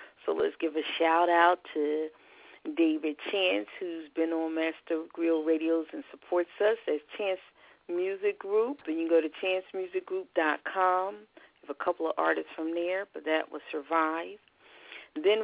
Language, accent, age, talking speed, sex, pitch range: English, American, 40-59, 165 wpm, female, 160-210 Hz